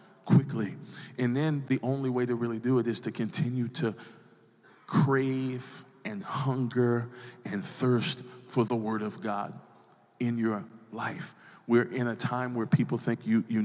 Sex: male